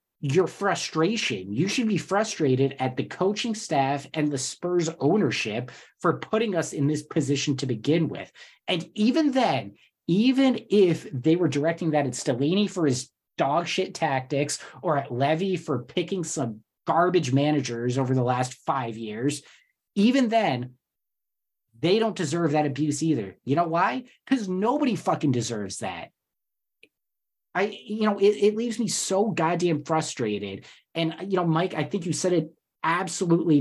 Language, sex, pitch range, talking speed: English, male, 135-180 Hz, 155 wpm